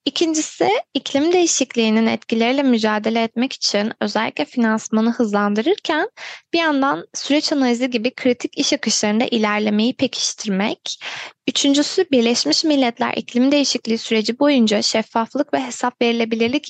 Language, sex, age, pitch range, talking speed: Turkish, female, 10-29, 215-270 Hz, 110 wpm